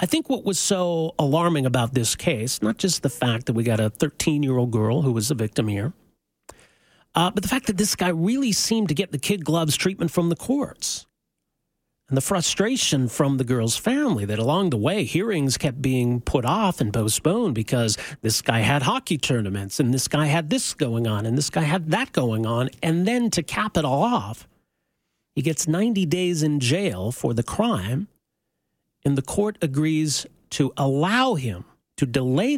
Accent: American